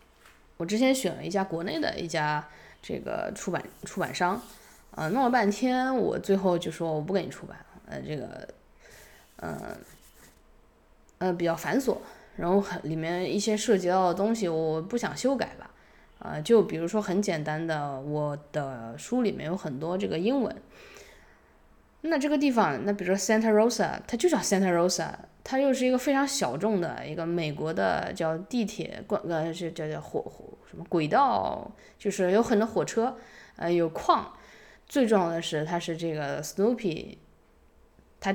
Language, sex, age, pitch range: Chinese, female, 20-39, 155-215 Hz